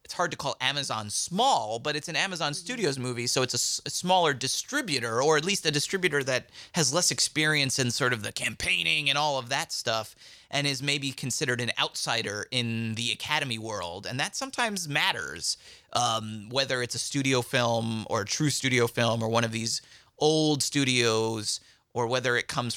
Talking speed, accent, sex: 190 wpm, American, male